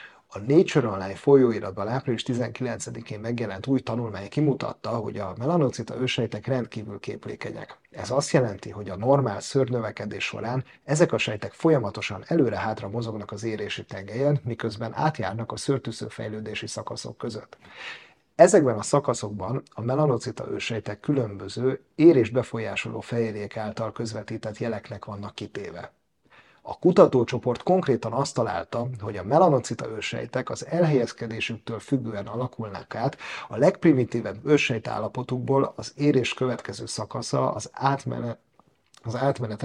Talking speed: 125 wpm